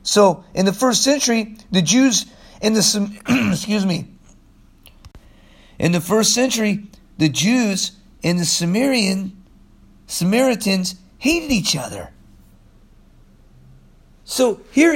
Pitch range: 165-230 Hz